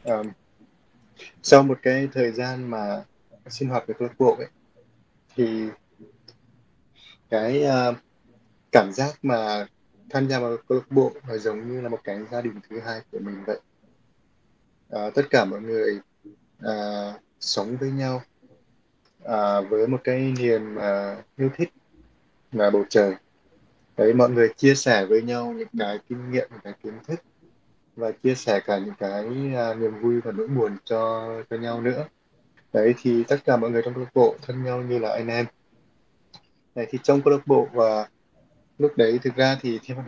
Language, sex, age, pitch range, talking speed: Vietnamese, male, 20-39, 110-130 Hz, 180 wpm